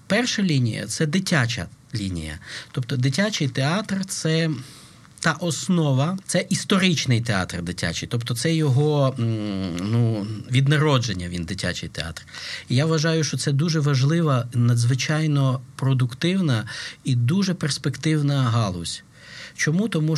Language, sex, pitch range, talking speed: Ukrainian, male, 120-160 Hz, 120 wpm